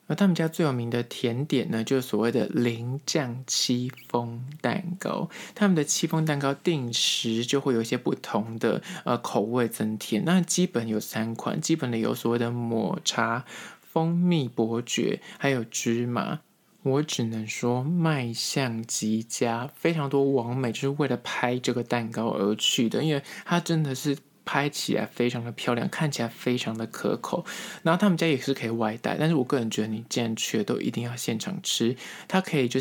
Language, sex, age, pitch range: Chinese, male, 20-39, 115-150 Hz